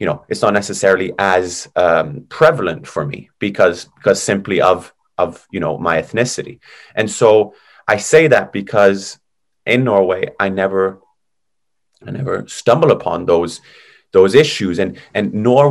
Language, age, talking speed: English, 30-49, 150 wpm